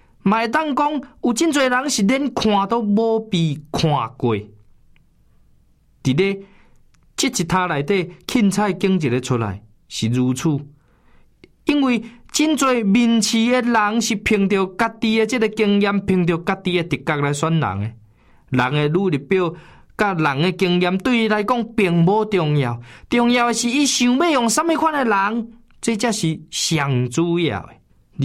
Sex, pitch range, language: male, 150-225 Hz, Chinese